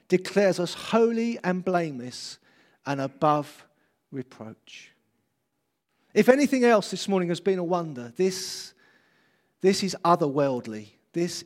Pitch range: 135-190 Hz